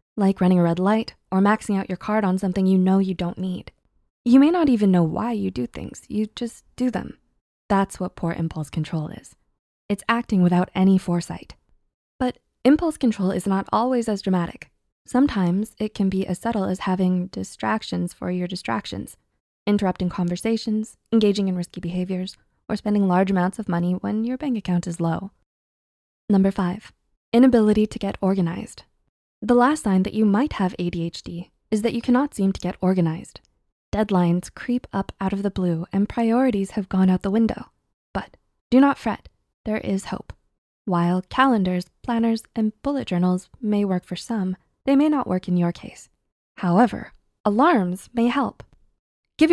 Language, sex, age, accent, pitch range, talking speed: English, female, 20-39, American, 180-230 Hz, 175 wpm